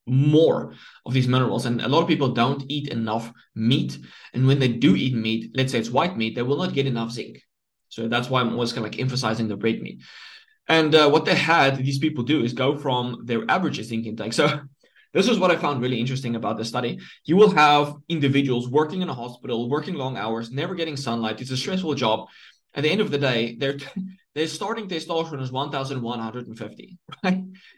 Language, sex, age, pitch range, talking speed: English, male, 20-39, 120-150 Hz, 210 wpm